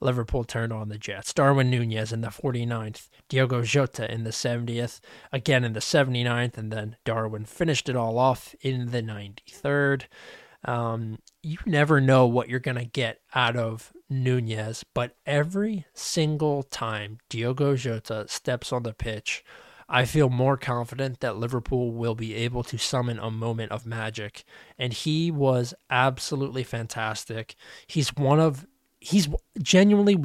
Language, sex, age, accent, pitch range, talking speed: English, male, 20-39, American, 115-140 Hz, 150 wpm